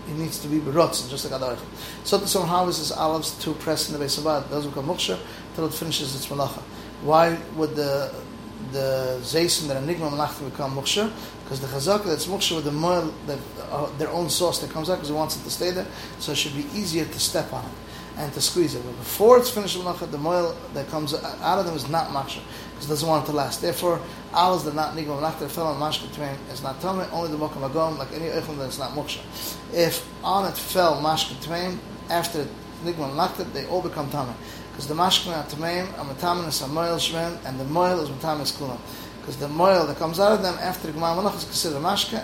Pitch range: 145-175 Hz